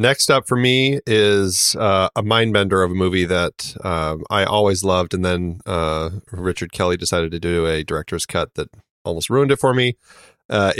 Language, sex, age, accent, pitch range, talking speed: English, male, 30-49, American, 85-110 Hz, 195 wpm